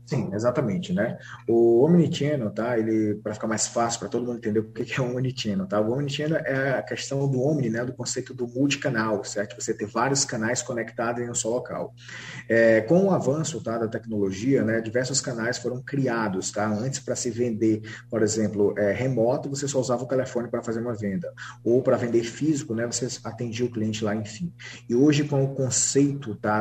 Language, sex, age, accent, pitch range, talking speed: Portuguese, male, 20-39, Brazilian, 110-130 Hz, 205 wpm